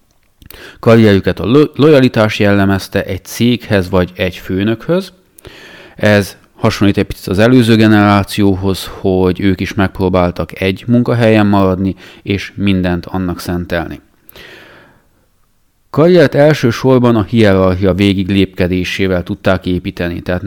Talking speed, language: 105 wpm, Hungarian